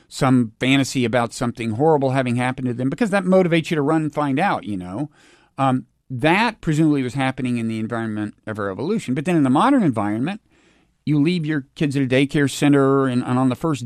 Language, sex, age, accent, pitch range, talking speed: English, male, 50-69, American, 115-160 Hz, 215 wpm